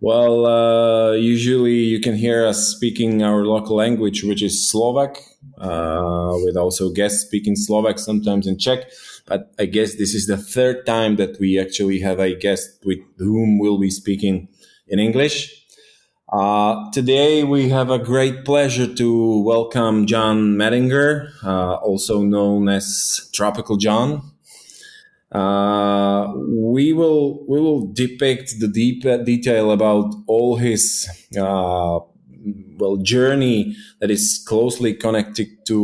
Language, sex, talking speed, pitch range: Slovak, male, 135 wpm, 100-115 Hz